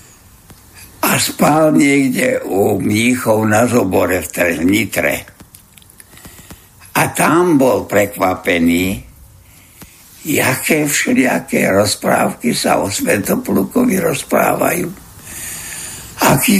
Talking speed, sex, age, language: 80 wpm, male, 60-79, Slovak